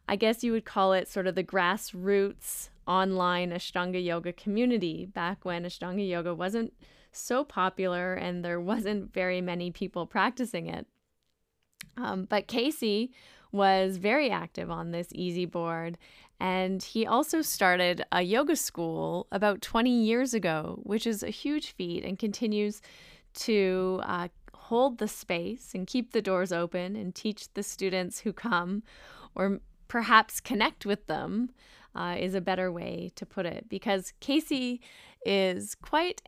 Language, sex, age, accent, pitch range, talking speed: English, female, 10-29, American, 180-220 Hz, 150 wpm